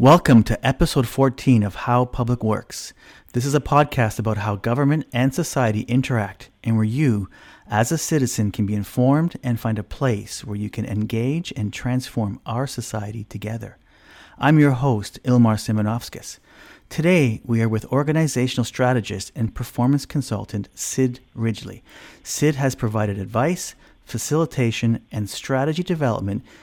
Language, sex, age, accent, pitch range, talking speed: English, male, 40-59, American, 110-140 Hz, 145 wpm